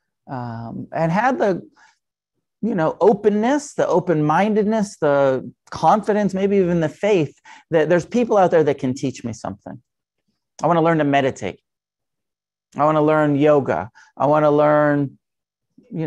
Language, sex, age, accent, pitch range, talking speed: English, male, 40-59, American, 140-190 Hz, 155 wpm